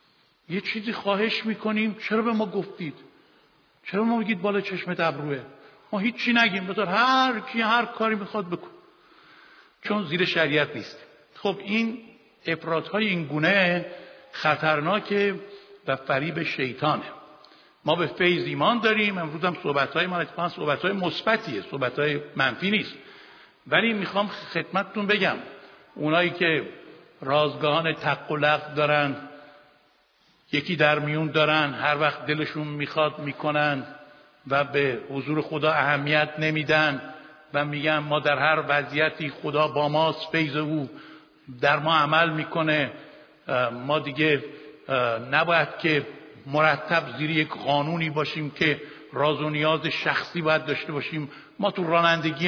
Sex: male